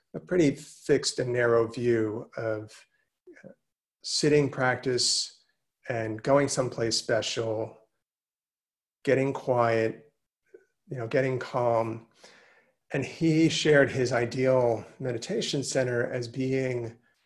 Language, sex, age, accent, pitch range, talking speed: English, male, 40-59, American, 120-145 Hz, 95 wpm